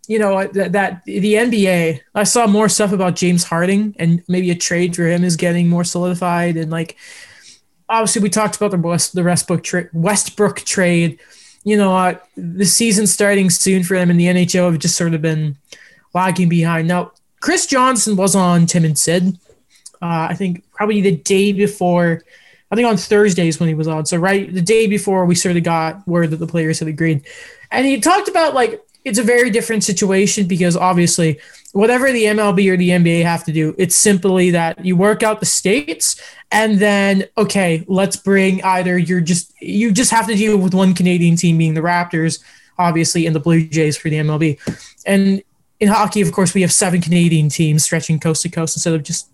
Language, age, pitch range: English, 20-39, 170-210 Hz